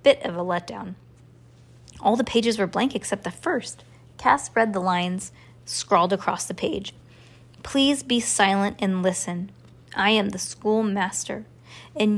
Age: 20-39